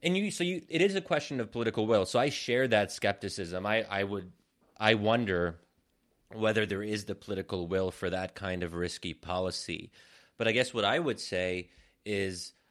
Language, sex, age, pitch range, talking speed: English, male, 30-49, 90-110 Hz, 195 wpm